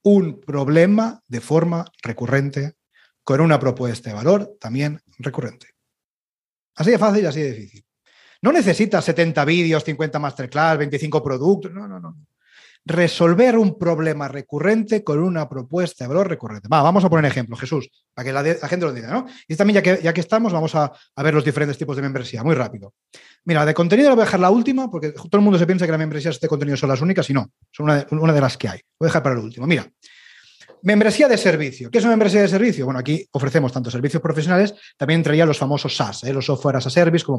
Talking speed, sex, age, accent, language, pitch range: 225 wpm, male, 30-49, Spanish, Spanish, 140-190 Hz